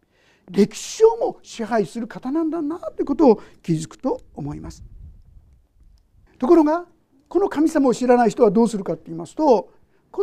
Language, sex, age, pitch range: Japanese, male, 50-69, 195-295 Hz